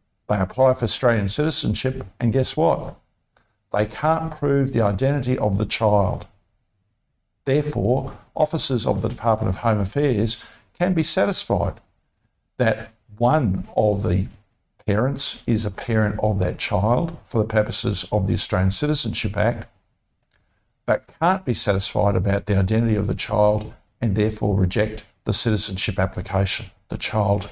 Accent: Australian